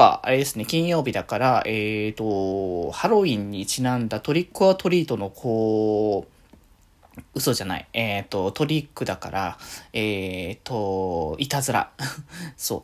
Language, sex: Japanese, male